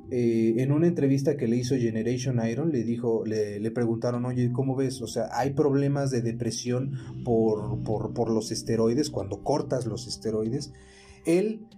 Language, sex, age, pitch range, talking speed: Spanish, male, 30-49, 110-140 Hz, 170 wpm